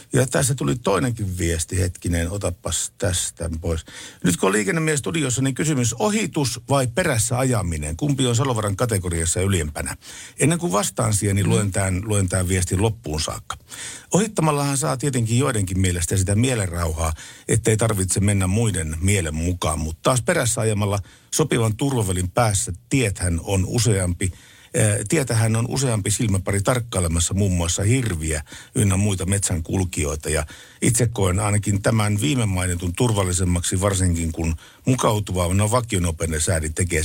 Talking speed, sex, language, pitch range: 140 wpm, male, Finnish, 90-120 Hz